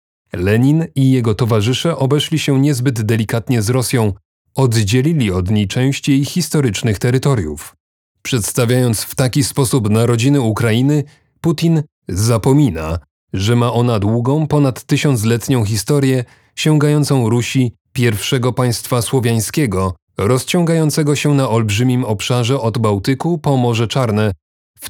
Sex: male